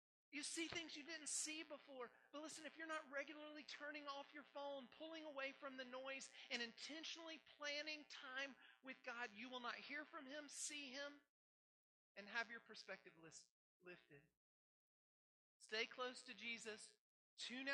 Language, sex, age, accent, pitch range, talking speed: English, male, 40-59, American, 195-270 Hz, 155 wpm